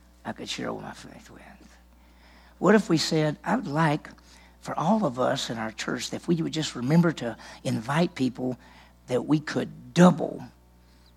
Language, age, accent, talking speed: English, 50-69, American, 185 wpm